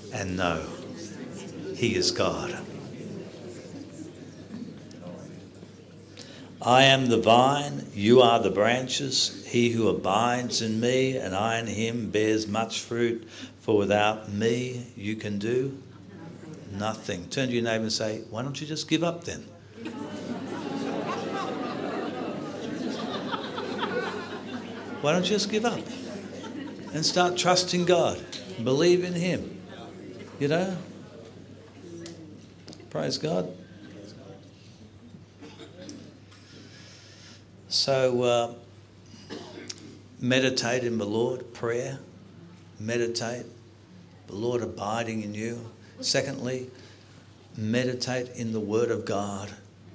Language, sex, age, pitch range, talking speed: English, male, 60-79, 100-125 Hz, 100 wpm